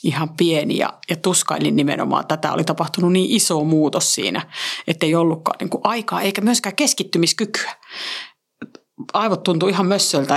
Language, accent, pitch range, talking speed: Finnish, native, 150-200 Hz, 150 wpm